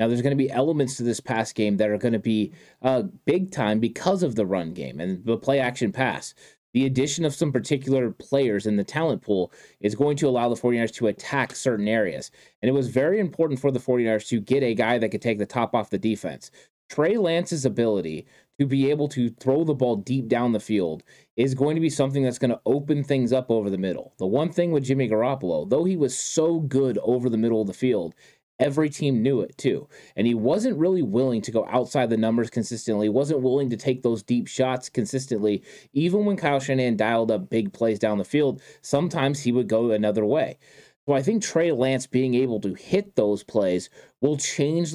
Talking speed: 225 wpm